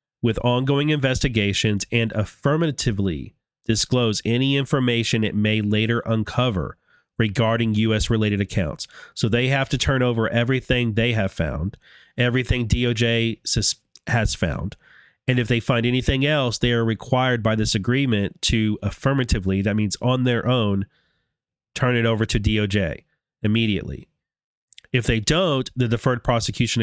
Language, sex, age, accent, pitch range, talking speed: English, male, 30-49, American, 110-130 Hz, 135 wpm